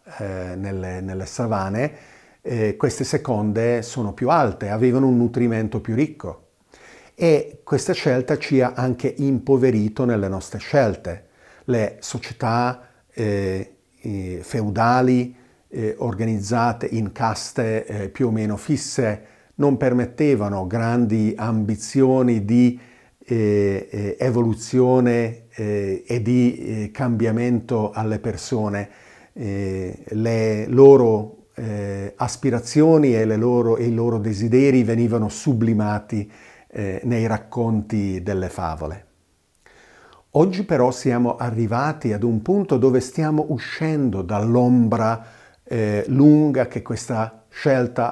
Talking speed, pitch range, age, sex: 105 wpm, 105-125 Hz, 50-69, male